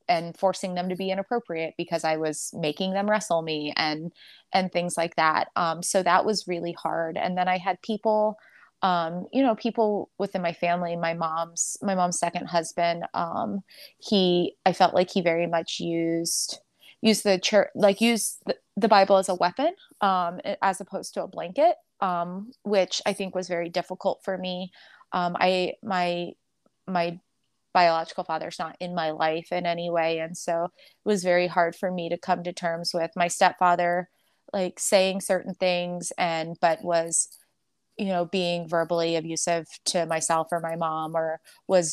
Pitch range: 165-190 Hz